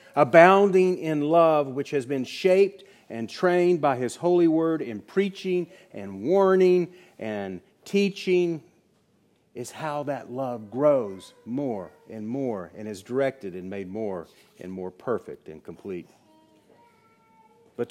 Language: English